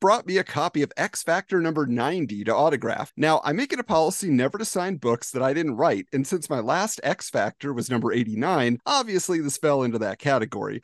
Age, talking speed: 40-59, 220 wpm